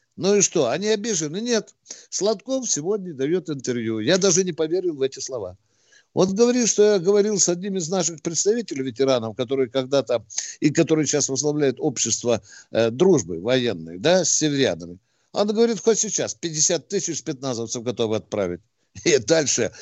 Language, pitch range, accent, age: Russian, 115-175 Hz, native, 60-79